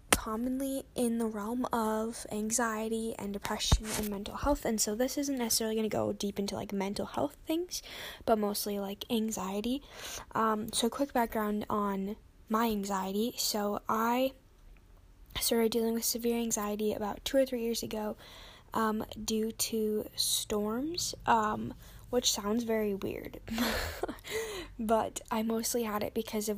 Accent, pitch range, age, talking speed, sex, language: American, 210-235 Hz, 10-29, 145 wpm, female, English